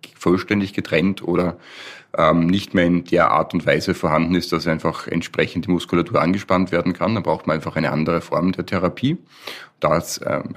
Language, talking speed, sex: German, 185 wpm, male